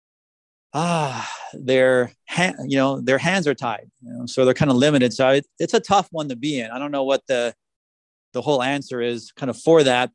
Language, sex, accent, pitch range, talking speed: English, male, American, 125-155 Hz, 215 wpm